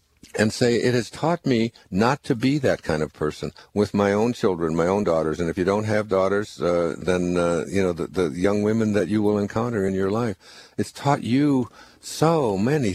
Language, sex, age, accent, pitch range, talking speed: English, male, 60-79, American, 95-125 Hz, 220 wpm